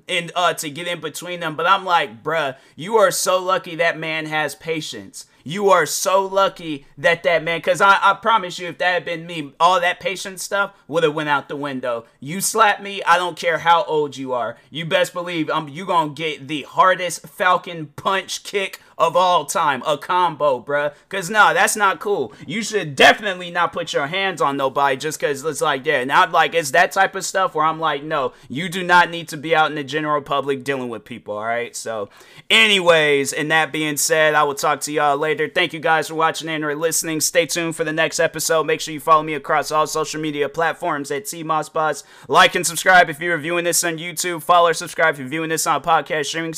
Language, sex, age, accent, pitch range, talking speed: English, male, 30-49, American, 155-180 Hz, 235 wpm